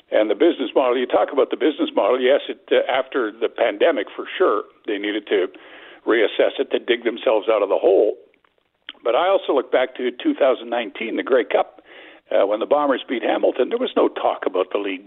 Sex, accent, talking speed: male, American, 205 wpm